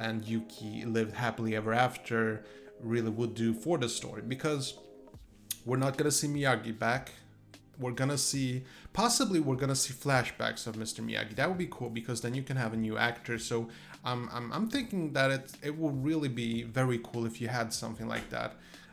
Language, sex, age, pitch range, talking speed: English, male, 30-49, 115-140 Hz, 195 wpm